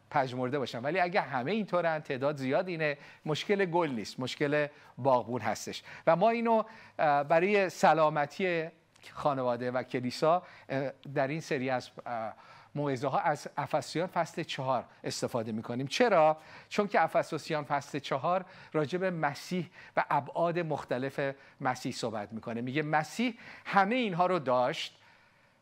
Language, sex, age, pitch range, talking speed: Persian, male, 50-69, 135-175 Hz, 130 wpm